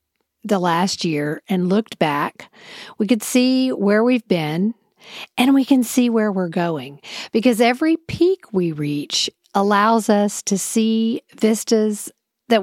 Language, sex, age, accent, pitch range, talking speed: English, female, 50-69, American, 185-235 Hz, 145 wpm